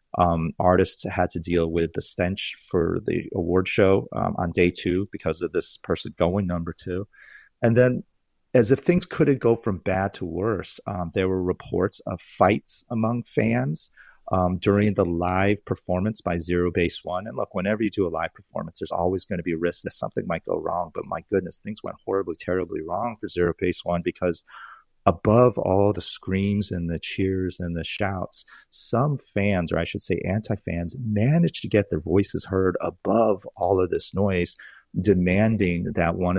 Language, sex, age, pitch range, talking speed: English, male, 30-49, 85-100 Hz, 190 wpm